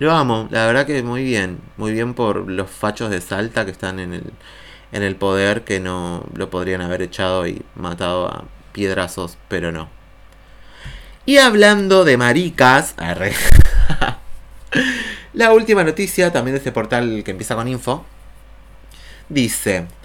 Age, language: 30-49, Spanish